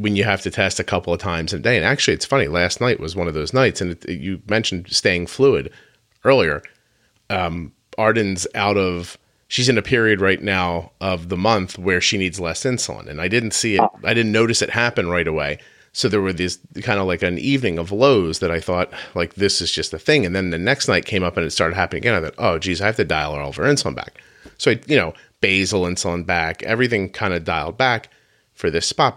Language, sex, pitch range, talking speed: English, male, 90-115 Hz, 250 wpm